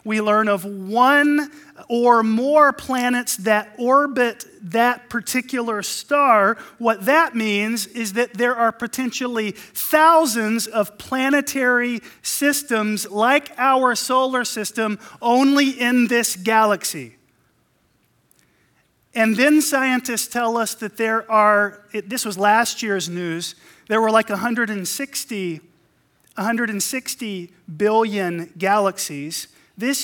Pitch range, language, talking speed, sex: 185-245 Hz, English, 105 wpm, male